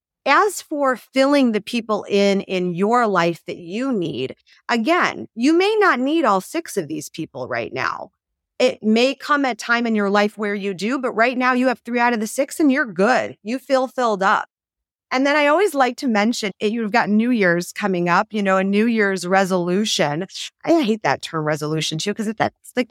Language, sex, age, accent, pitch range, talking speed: English, female, 30-49, American, 195-260 Hz, 210 wpm